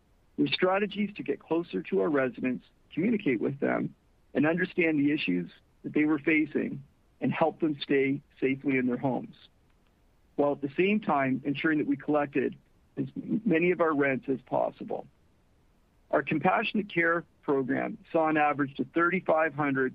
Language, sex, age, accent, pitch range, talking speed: English, male, 50-69, American, 140-180 Hz, 155 wpm